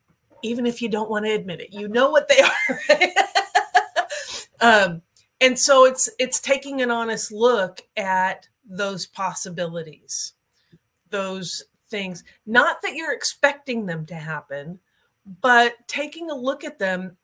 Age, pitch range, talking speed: 40-59, 190-260 Hz, 140 wpm